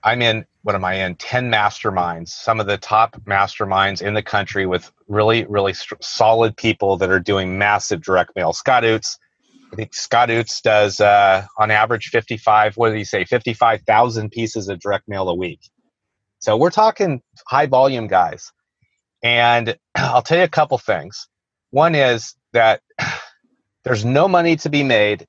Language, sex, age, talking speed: English, male, 30-49, 170 wpm